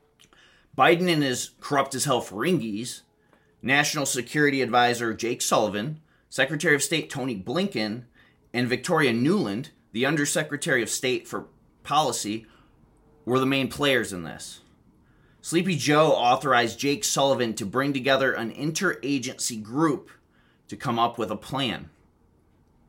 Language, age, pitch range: English, 30-49, 115-150 Hz